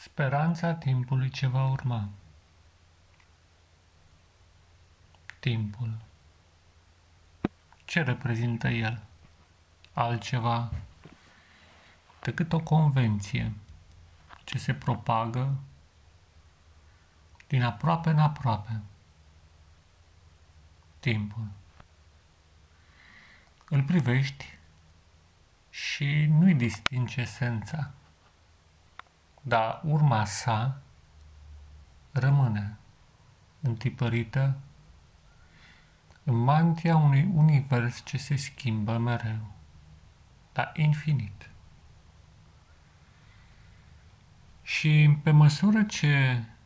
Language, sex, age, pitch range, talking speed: Romanian, male, 40-59, 80-130 Hz, 60 wpm